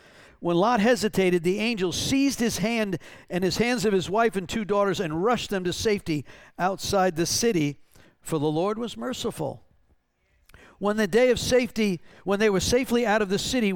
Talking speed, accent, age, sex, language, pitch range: 190 wpm, American, 50-69, male, English, 180-240 Hz